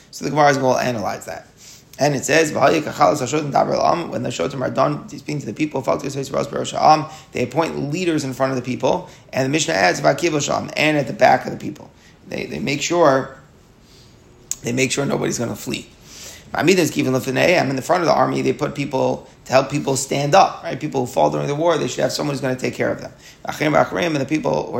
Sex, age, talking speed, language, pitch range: male, 30-49, 210 wpm, English, 130-160 Hz